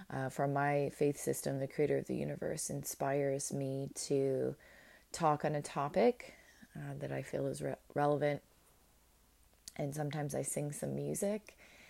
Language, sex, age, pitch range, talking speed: English, female, 20-39, 135-155 Hz, 150 wpm